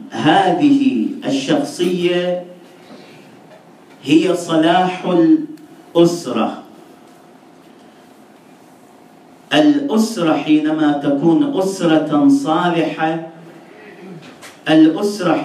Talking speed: 45 wpm